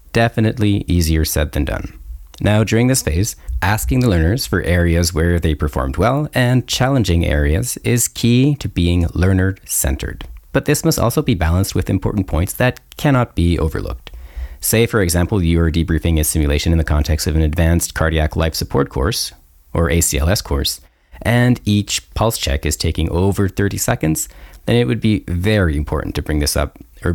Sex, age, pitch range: male, 30-49, 80-110 Hz